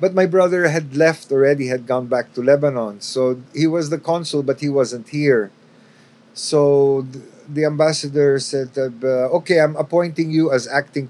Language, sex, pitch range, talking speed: Filipino, male, 120-145 Hz, 160 wpm